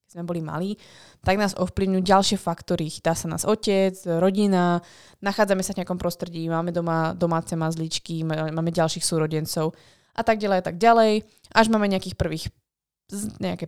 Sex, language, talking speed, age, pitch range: female, Slovak, 160 wpm, 20-39, 165-205 Hz